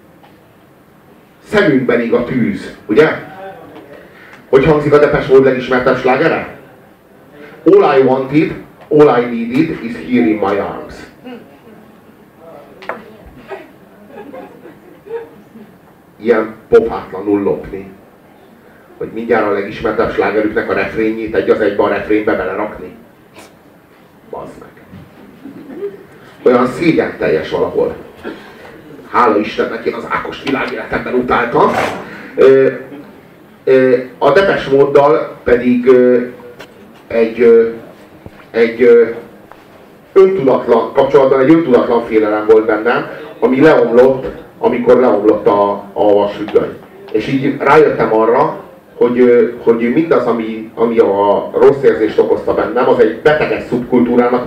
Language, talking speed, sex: Hungarian, 95 wpm, male